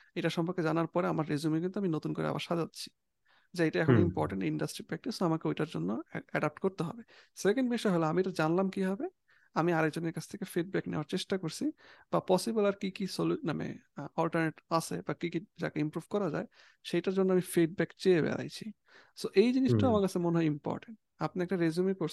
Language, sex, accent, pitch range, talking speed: English, male, Indian, 155-190 Hz, 120 wpm